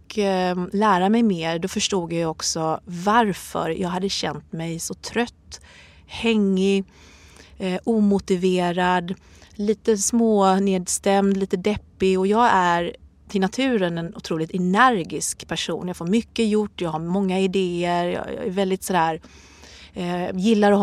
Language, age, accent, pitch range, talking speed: Swedish, 30-49, native, 175-215 Hz, 135 wpm